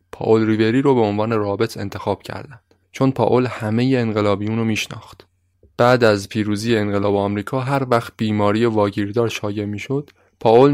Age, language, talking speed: 20-39, Persian, 145 wpm